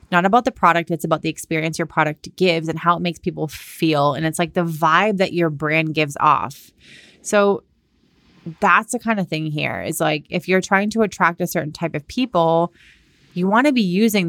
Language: English